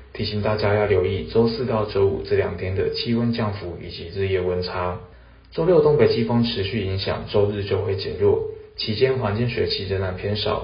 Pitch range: 95-115 Hz